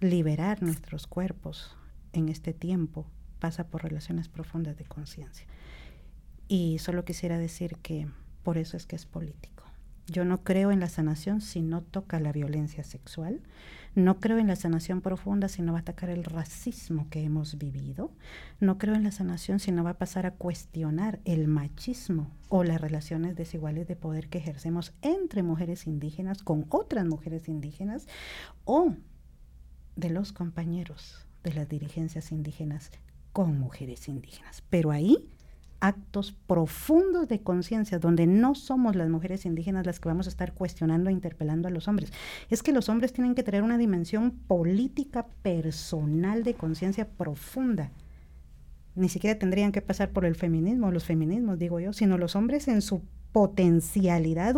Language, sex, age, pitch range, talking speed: Spanish, female, 50-69, 155-195 Hz, 160 wpm